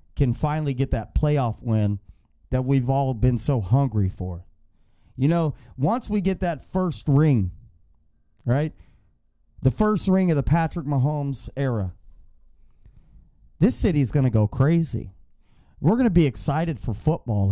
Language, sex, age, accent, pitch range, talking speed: English, male, 30-49, American, 115-185 Hz, 150 wpm